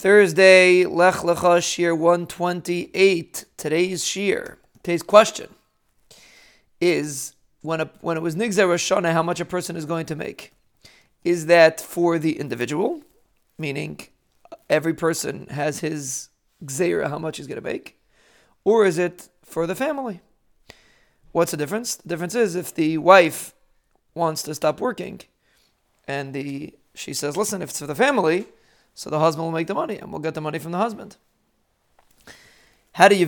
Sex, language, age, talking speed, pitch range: male, English, 40-59, 160 wpm, 155-185 Hz